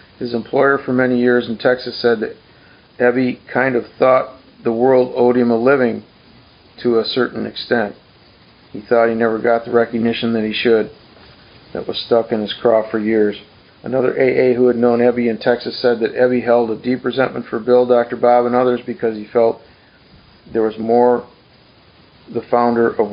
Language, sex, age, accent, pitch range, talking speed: English, male, 50-69, American, 110-125 Hz, 185 wpm